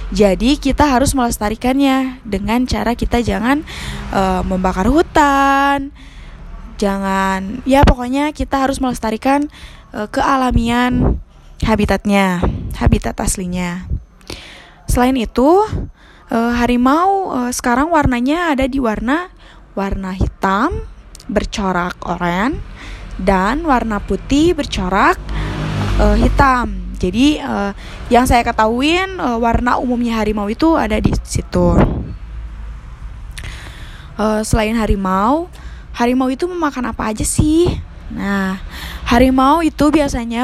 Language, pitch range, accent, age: Indonesian, 200-270 Hz, native, 10-29